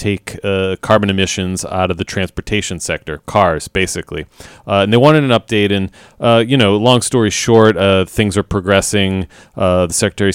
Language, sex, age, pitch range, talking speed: English, male, 30-49, 90-100 Hz, 180 wpm